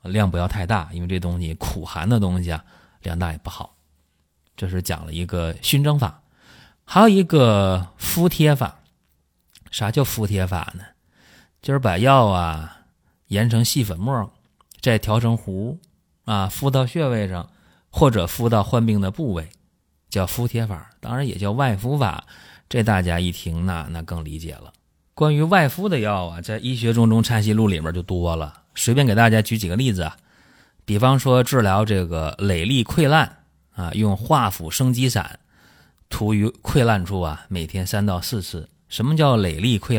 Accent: native